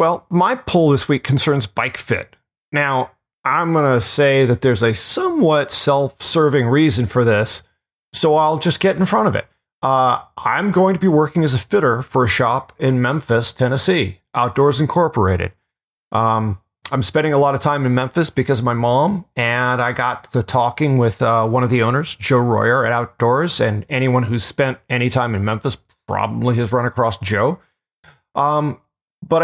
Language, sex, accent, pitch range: English, male, American, 115-155 Hz